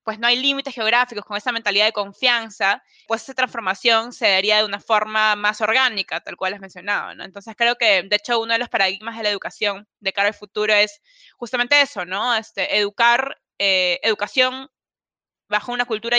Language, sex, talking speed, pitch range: Spanish, female, 195 wpm, 205-240 Hz